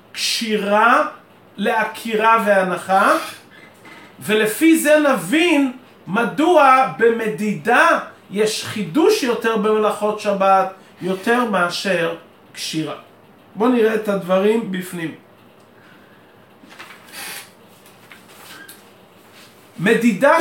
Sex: male